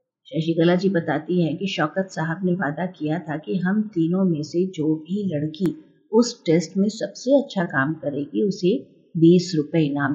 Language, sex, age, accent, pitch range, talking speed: Hindi, female, 50-69, native, 160-205 Hz, 185 wpm